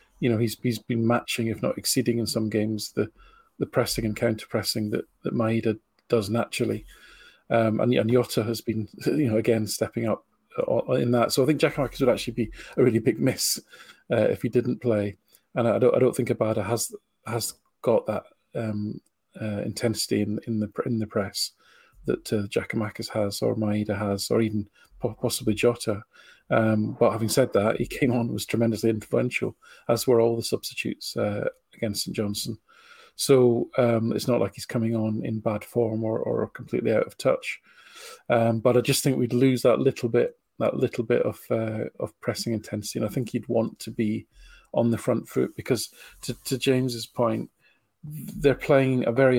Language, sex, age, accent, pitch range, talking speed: English, male, 40-59, British, 110-125 Hz, 190 wpm